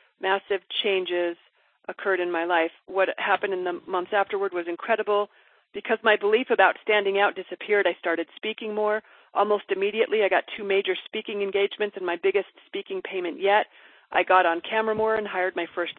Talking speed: 180 wpm